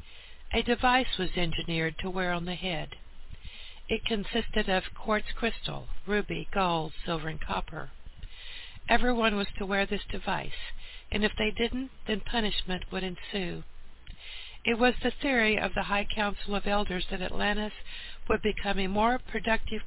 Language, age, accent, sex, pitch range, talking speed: English, 60-79, American, female, 175-225 Hz, 150 wpm